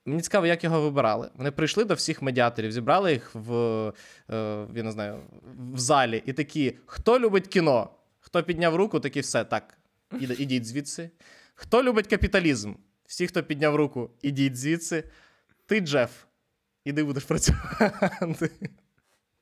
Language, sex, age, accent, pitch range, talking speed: Ukrainian, male, 20-39, native, 130-170 Hz, 145 wpm